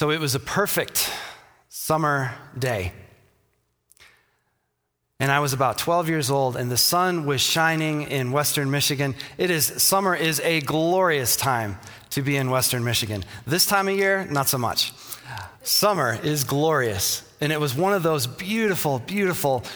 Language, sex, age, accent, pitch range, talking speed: English, male, 30-49, American, 125-155 Hz, 160 wpm